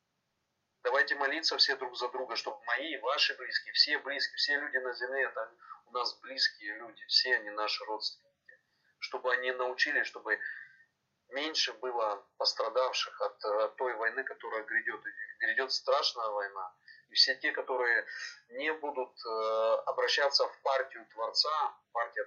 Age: 30-49